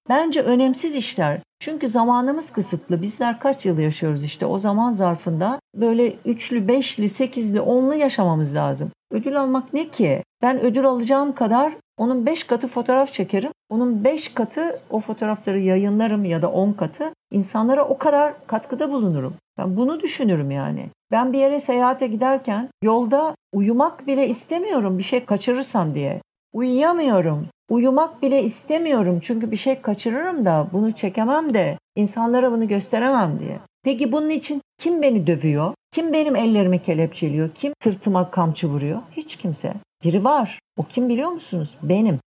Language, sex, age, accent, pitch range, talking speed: Turkish, female, 60-79, native, 190-275 Hz, 150 wpm